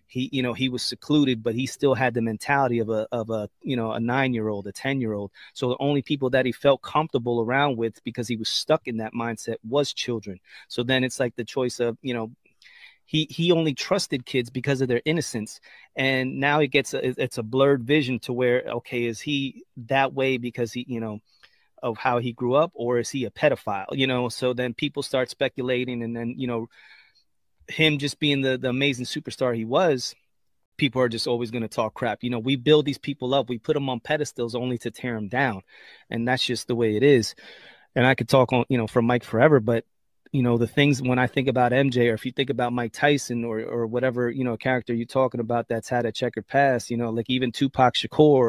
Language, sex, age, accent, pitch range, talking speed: English, male, 30-49, American, 120-140 Hz, 230 wpm